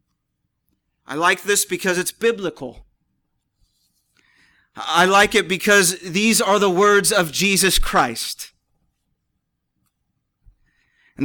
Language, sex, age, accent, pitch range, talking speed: English, male, 30-49, American, 170-220 Hz, 95 wpm